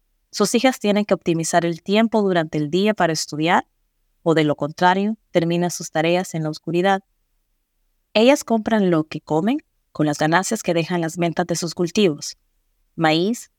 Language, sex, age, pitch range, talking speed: Spanish, female, 30-49, 155-205 Hz, 170 wpm